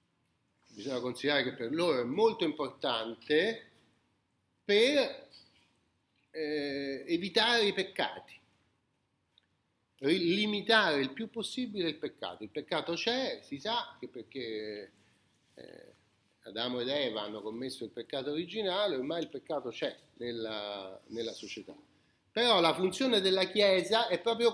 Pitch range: 130-215 Hz